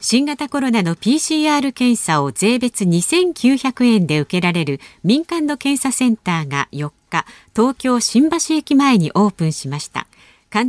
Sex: female